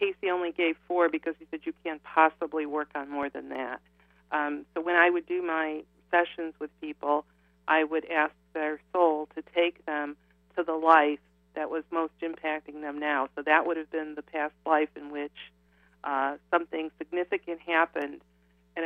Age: 50-69